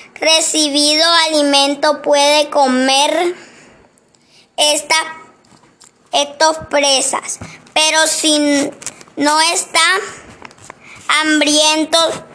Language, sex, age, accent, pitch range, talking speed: Spanish, male, 20-39, Mexican, 290-320 Hz, 55 wpm